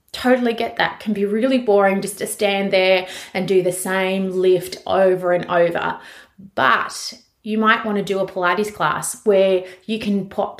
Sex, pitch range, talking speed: female, 185-225 Hz, 180 wpm